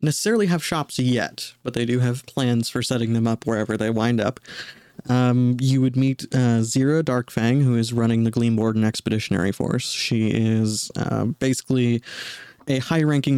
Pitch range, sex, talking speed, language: 110-130 Hz, male, 180 wpm, English